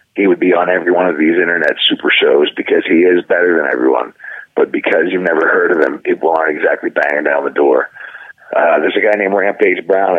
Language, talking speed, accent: English, 225 wpm, American